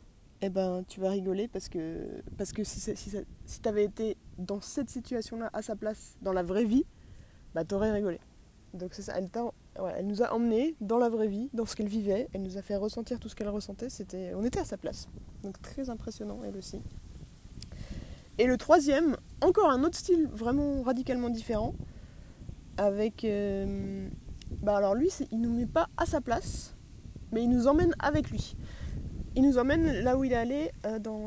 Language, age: French, 20-39